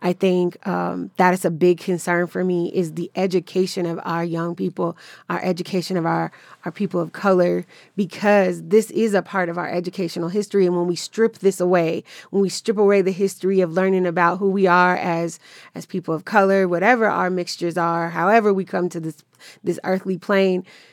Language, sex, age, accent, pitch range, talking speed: English, female, 30-49, American, 180-210 Hz, 200 wpm